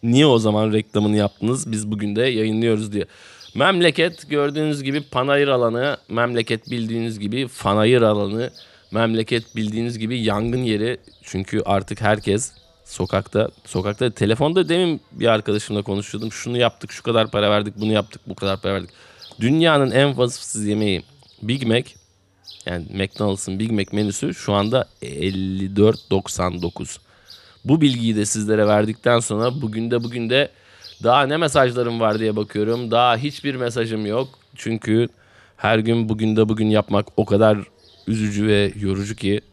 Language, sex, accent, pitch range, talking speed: Turkish, male, native, 100-120 Hz, 145 wpm